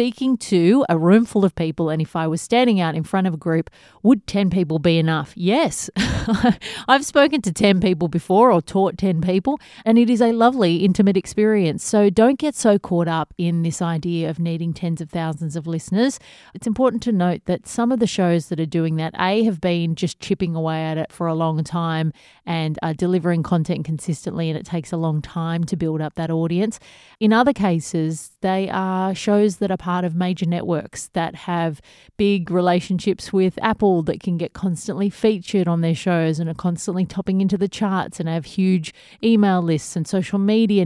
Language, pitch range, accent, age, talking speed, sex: English, 165-200 Hz, Australian, 30-49, 205 wpm, female